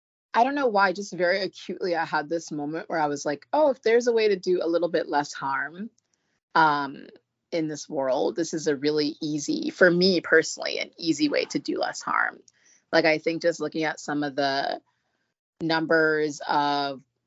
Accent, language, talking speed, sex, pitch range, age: American, English, 200 wpm, female, 155-215 Hz, 20-39